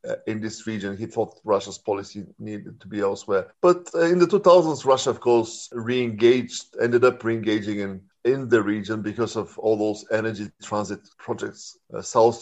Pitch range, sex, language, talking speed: 105-125 Hz, male, Turkish, 170 wpm